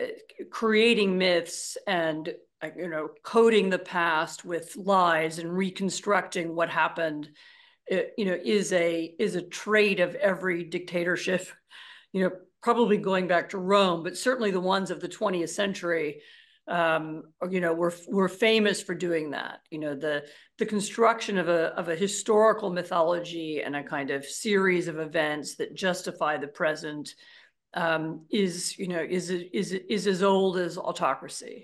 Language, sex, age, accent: English, female, 50-69, American